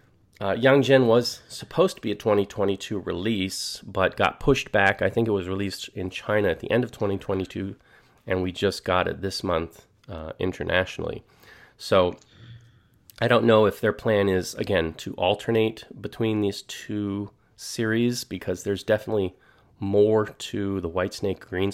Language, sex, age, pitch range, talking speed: English, male, 30-49, 95-115 Hz, 165 wpm